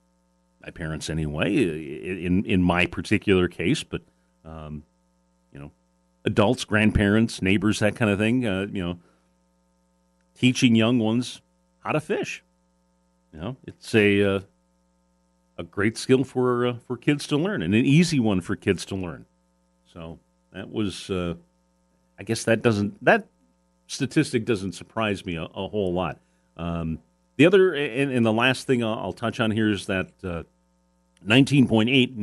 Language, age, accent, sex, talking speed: English, 40-59, American, male, 155 wpm